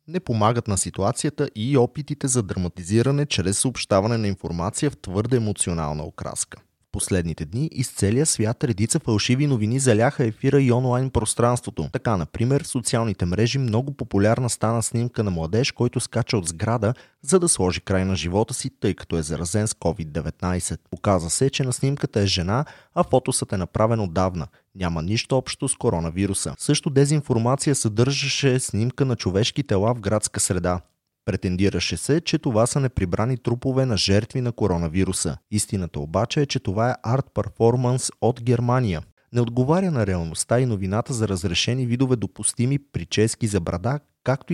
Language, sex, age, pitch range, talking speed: Bulgarian, male, 30-49, 95-130 Hz, 160 wpm